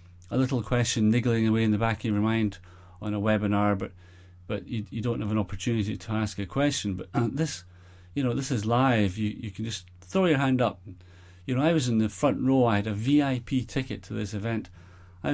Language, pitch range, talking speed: English, 90-120 Hz, 230 wpm